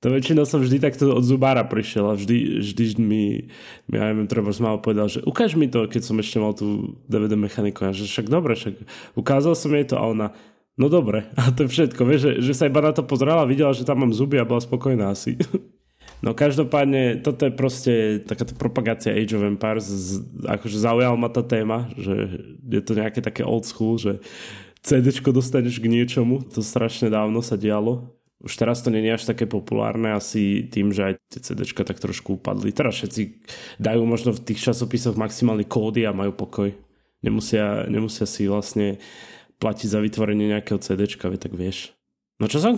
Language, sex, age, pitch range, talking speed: Slovak, male, 20-39, 105-130 Hz, 190 wpm